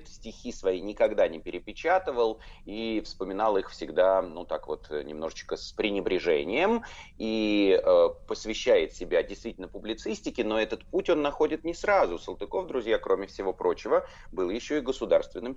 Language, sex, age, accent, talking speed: Russian, male, 30-49, native, 145 wpm